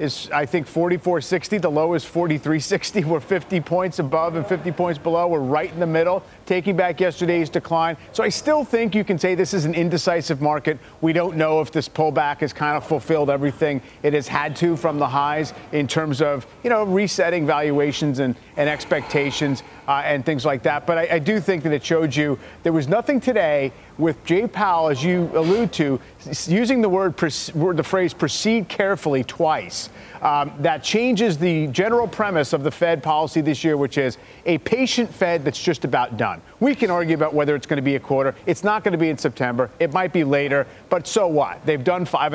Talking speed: 210 wpm